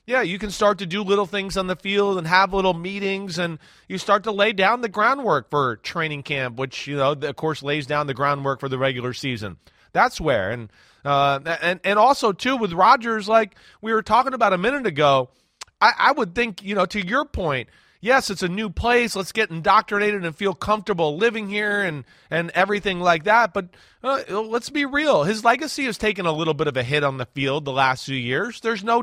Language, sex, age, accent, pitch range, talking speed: English, male, 30-49, American, 155-215 Hz, 225 wpm